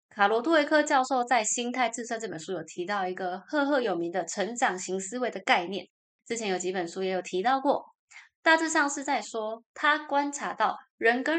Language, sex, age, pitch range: Chinese, female, 20-39, 190-275 Hz